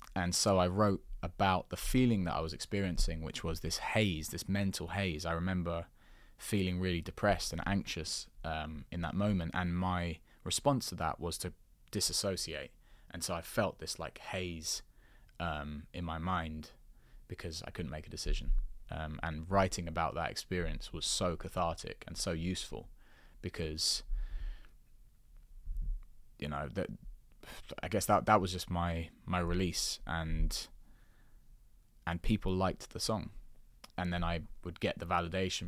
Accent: British